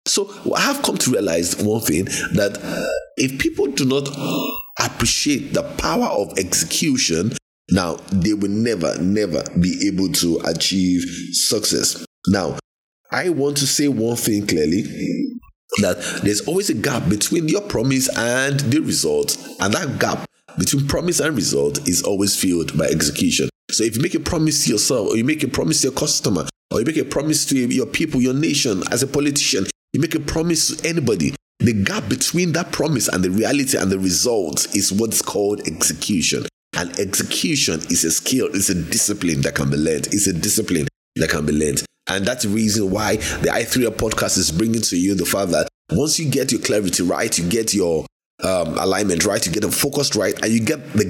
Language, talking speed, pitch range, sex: English, 195 wpm, 100-145 Hz, male